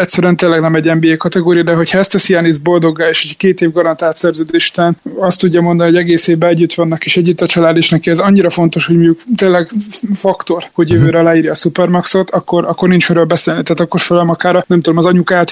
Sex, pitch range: male, 165-180 Hz